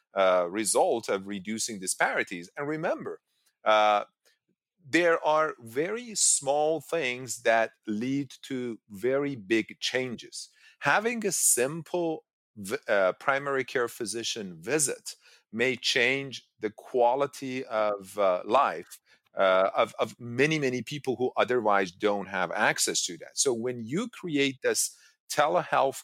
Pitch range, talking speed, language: 110-155 Hz, 120 wpm, English